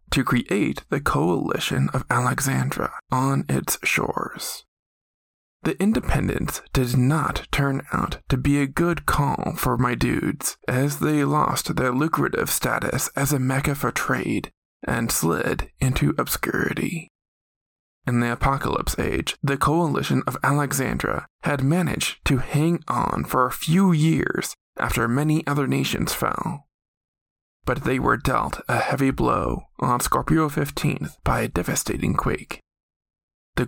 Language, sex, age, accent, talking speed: English, male, 20-39, American, 135 wpm